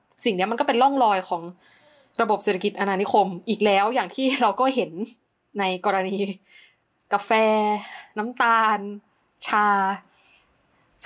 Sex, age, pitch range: female, 20-39, 180-230 Hz